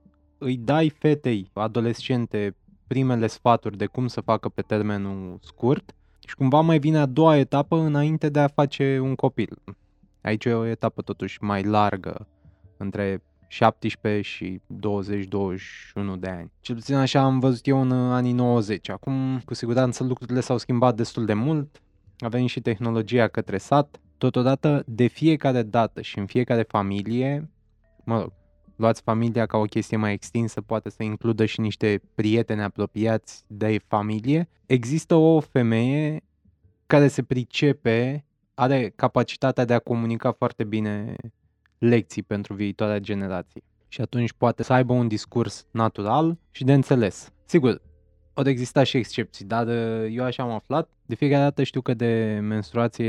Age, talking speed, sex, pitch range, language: 20-39, 150 wpm, male, 105-130 Hz, Romanian